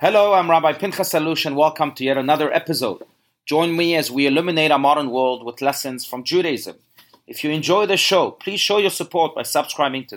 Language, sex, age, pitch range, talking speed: English, male, 30-49, 130-170 Hz, 205 wpm